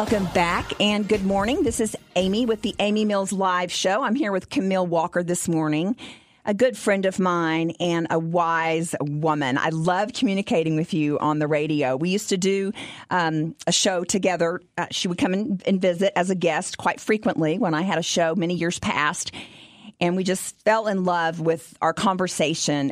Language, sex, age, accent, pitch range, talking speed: English, female, 40-59, American, 160-200 Hz, 195 wpm